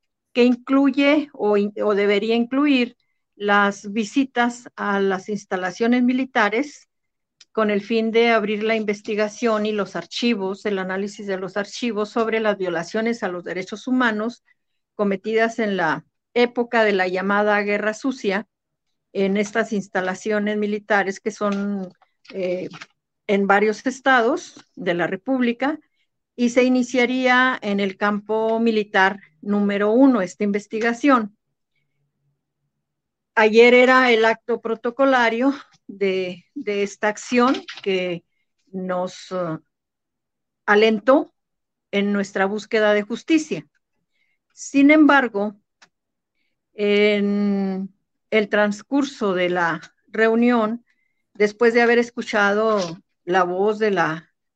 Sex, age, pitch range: female, 50-69, 200-240 Hz